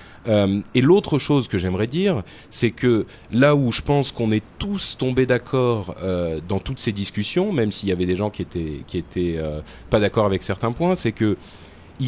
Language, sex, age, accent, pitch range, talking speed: French, male, 30-49, French, 95-130 Hz, 205 wpm